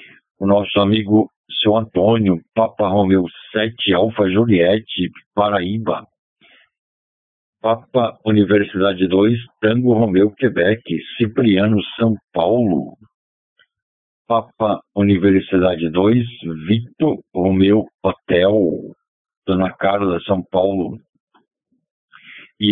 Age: 60-79